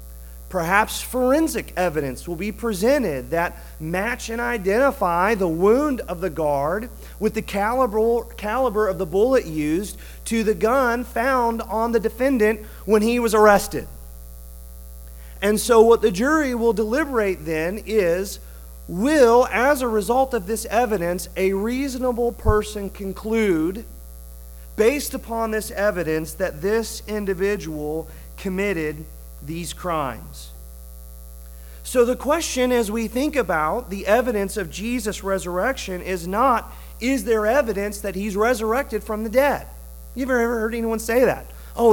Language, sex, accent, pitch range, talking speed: English, male, American, 160-240 Hz, 135 wpm